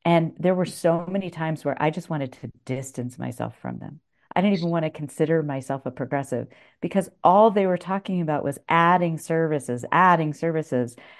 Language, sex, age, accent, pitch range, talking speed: English, female, 50-69, American, 135-185 Hz, 190 wpm